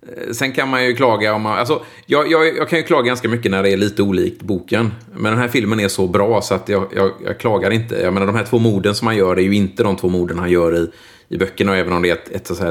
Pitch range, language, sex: 90-115 Hz, Swedish, male